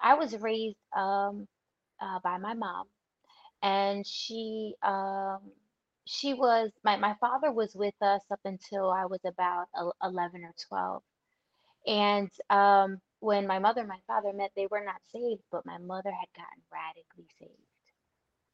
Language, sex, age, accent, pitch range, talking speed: English, female, 20-39, American, 180-220 Hz, 150 wpm